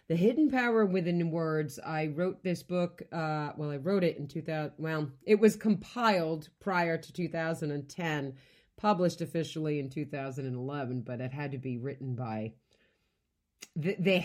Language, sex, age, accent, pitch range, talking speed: English, female, 40-59, American, 145-210 Hz, 145 wpm